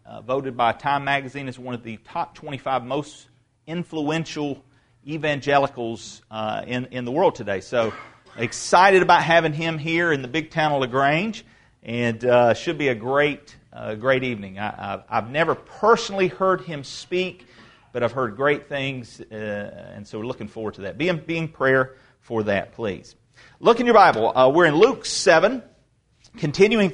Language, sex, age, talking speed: English, male, 40-59, 180 wpm